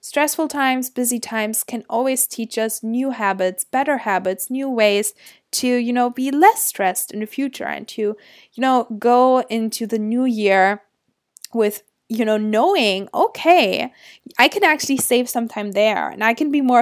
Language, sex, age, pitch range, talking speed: English, female, 20-39, 210-270 Hz, 175 wpm